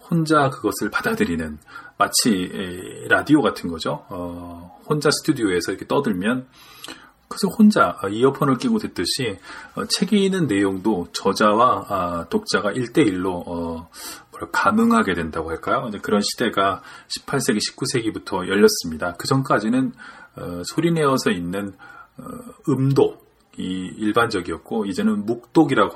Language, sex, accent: Korean, male, native